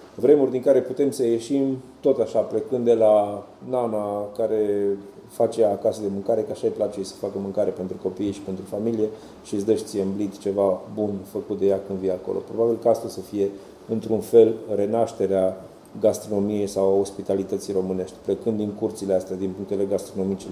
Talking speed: 175 wpm